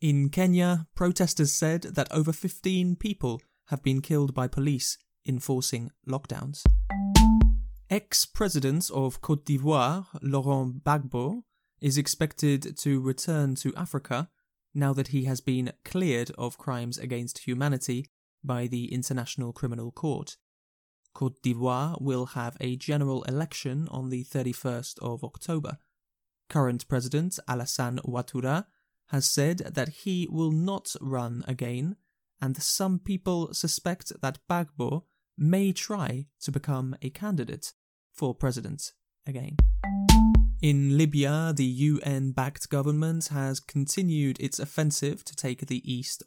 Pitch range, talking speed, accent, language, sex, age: 130-160 Hz, 125 wpm, British, English, male, 20-39